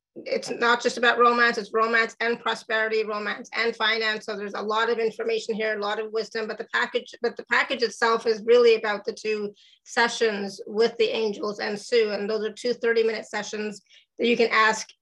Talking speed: 210 wpm